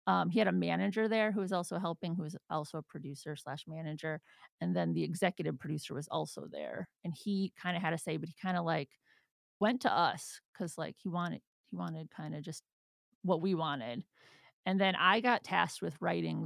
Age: 30-49